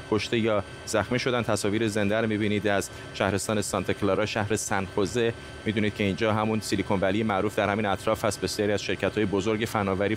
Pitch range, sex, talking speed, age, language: 105-130 Hz, male, 185 wpm, 30-49, Persian